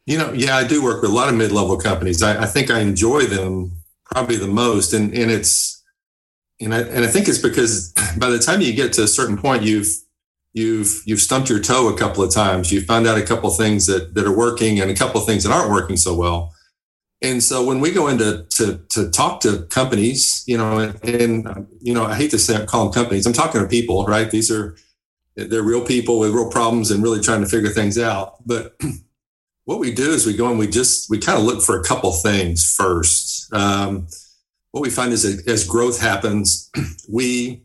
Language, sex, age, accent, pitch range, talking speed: English, male, 40-59, American, 100-115 Hz, 230 wpm